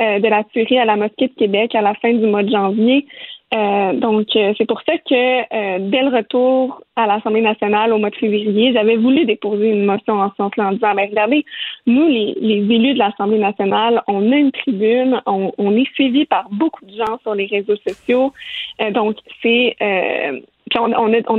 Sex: female